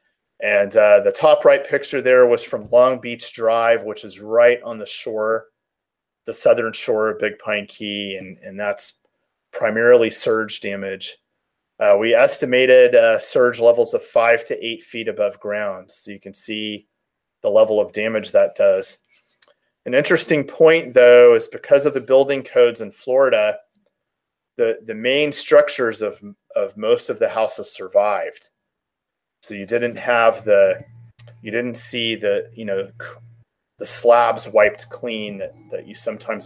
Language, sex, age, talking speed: English, male, 30-49, 160 wpm